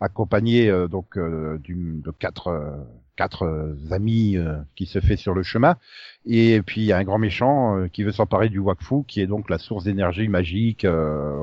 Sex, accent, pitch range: male, French, 100-125 Hz